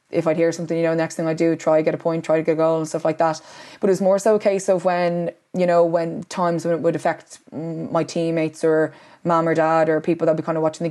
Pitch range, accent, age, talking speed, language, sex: 160-175 Hz, Irish, 20-39, 305 wpm, English, female